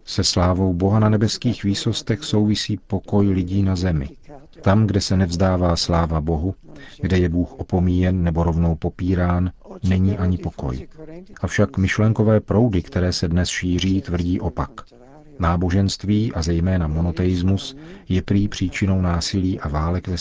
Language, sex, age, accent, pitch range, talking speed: Czech, male, 40-59, native, 85-100 Hz, 140 wpm